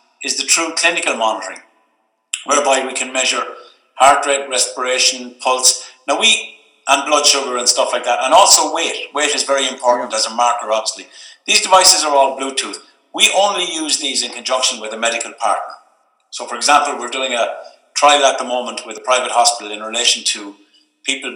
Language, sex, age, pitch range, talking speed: English, male, 50-69, 120-145 Hz, 185 wpm